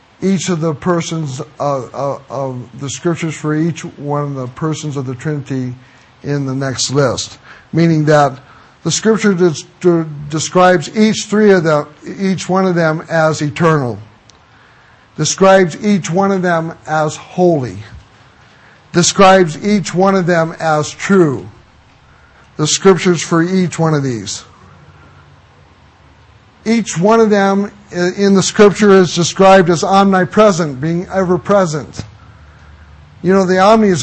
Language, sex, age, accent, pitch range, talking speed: English, male, 60-79, American, 150-195 Hz, 135 wpm